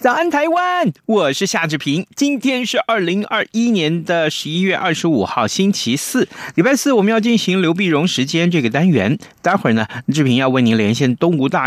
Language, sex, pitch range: Chinese, male, 120-190 Hz